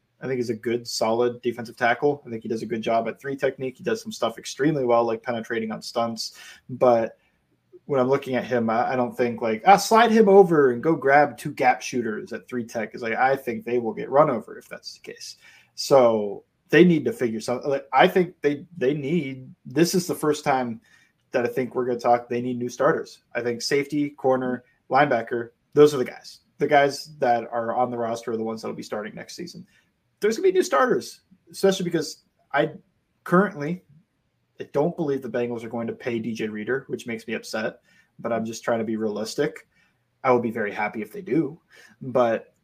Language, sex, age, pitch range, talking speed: English, male, 20-39, 115-145 Hz, 220 wpm